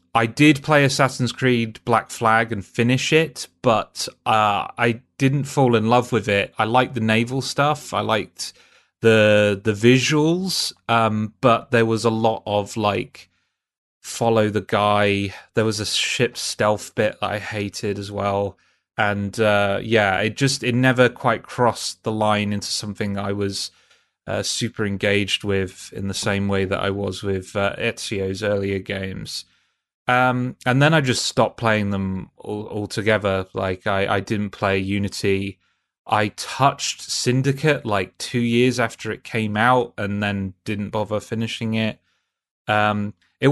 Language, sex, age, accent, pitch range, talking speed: English, male, 30-49, British, 100-125 Hz, 160 wpm